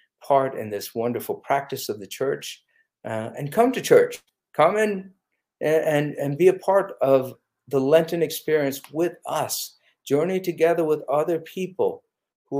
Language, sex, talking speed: English, male, 155 wpm